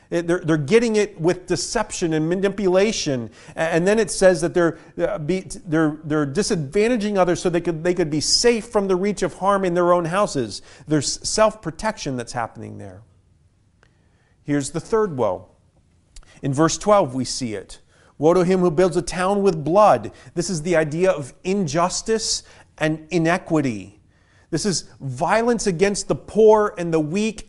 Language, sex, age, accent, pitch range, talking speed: English, male, 40-59, American, 140-190 Hz, 165 wpm